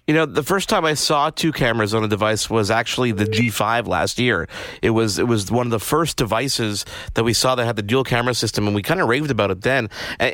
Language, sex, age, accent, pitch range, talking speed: English, male, 30-49, American, 110-150 Hz, 260 wpm